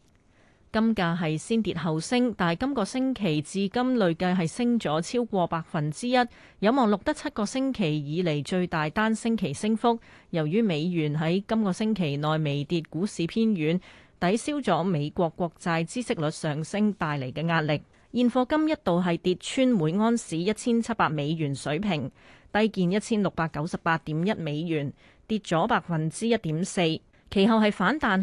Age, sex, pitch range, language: 30-49, female, 160-220 Hz, Chinese